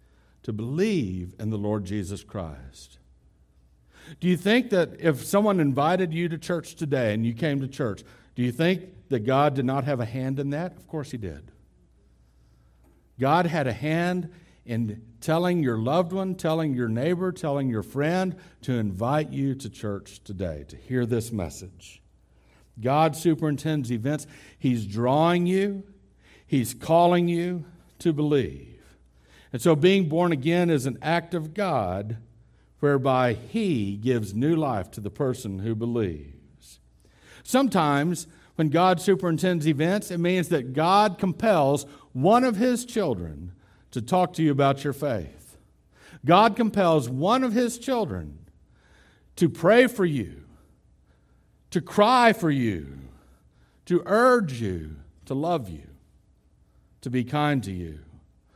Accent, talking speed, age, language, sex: American, 145 wpm, 60-79, English, male